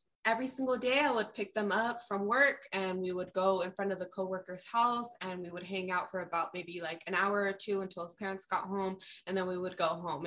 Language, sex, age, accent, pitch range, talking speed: English, female, 20-39, American, 165-200 Hz, 255 wpm